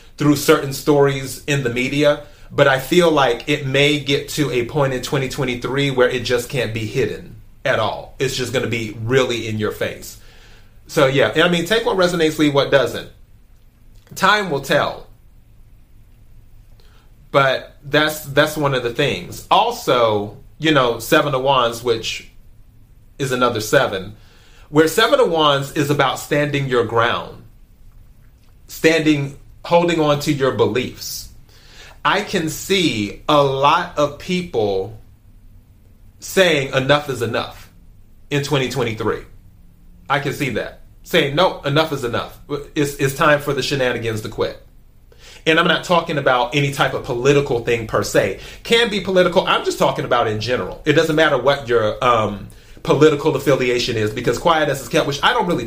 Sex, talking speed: male, 160 wpm